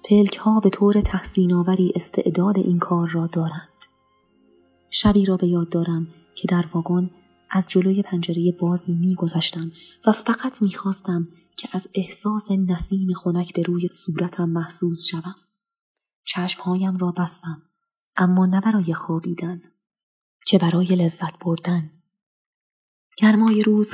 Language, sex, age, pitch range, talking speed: Persian, female, 20-39, 170-195 Hz, 125 wpm